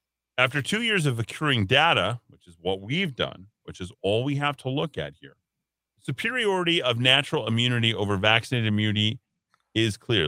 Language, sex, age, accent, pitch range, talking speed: English, male, 40-59, American, 105-145 Hz, 170 wpm